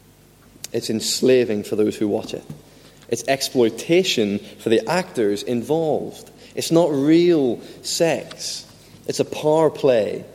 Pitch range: 110-145 Hz